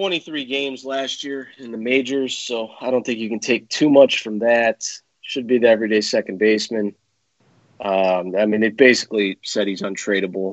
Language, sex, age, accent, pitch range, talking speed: English, male, 30-49, American, 105-135 Hz, 180 wpm